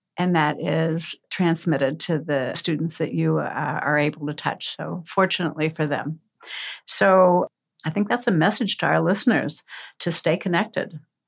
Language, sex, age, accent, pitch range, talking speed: English, female, 60-79, American, 160-205 Hz, 160 wpm